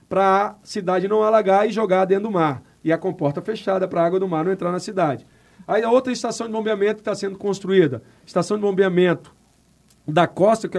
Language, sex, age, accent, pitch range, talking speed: Portuguese, male, 40-59, Brazilian, 175-215 Hz, 215 wpm